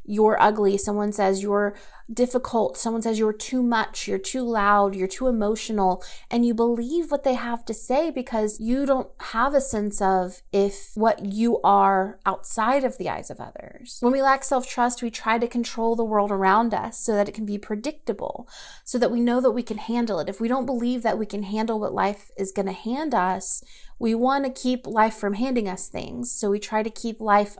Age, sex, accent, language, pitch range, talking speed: 30-49, female, American, English, 210-255 Hz, 215 wpm